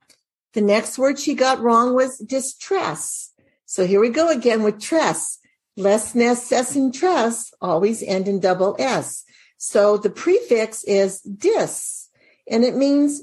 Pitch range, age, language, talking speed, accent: 190-245 Hz, 50-69, English, 145 wpm, American